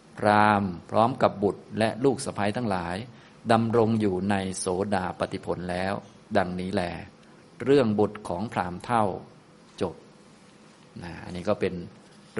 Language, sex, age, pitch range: Thai, male, 20-39, 95-110 Hz